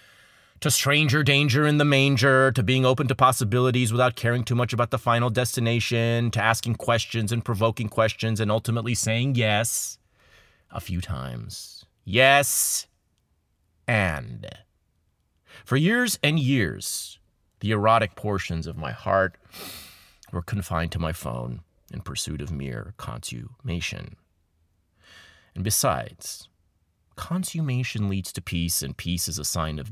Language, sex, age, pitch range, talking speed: English, male, 30-49, 90-130 Hz, 130 wpm